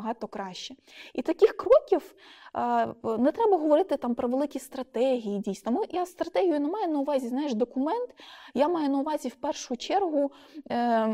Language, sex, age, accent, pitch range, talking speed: Ukrainian, female, 20-39, native, 220-290 Hz, 150 wpm